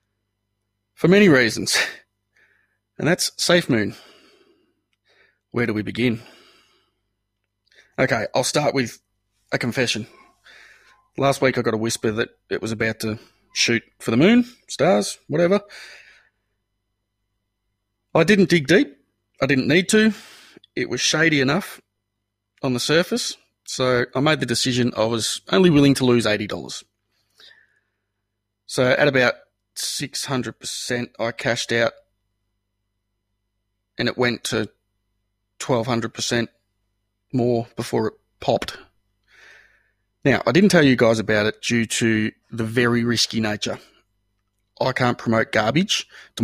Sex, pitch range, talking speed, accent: male, 100-125 Hz, 125 wpm, Australian